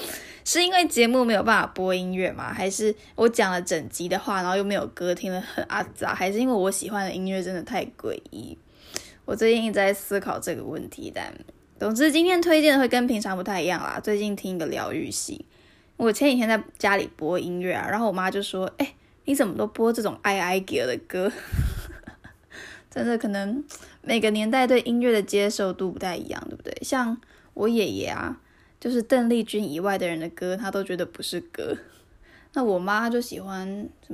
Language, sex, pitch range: Chinese, female, 185-255 Hz